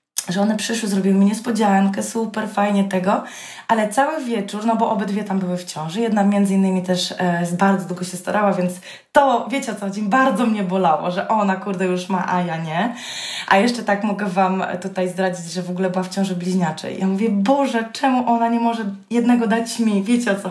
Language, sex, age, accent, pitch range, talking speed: Polish, female, 20-39, native, 190-240 Hz, 210 wpm